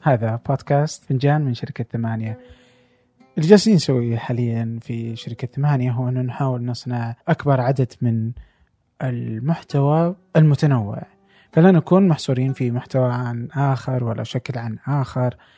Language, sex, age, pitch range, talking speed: Arabic, male, 20-39, 120-145 Hz, 125 wpm